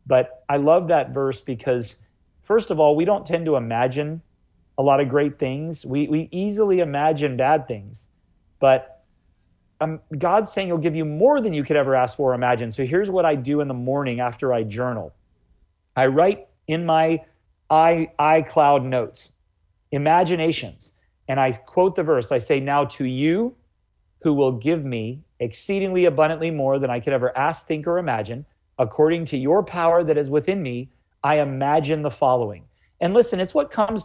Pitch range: 125-165 Hz